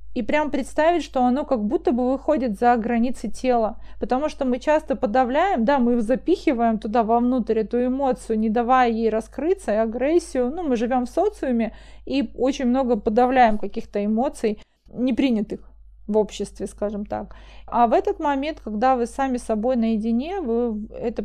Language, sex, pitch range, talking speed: Russian, female, 225-260 Hz, 160 wpm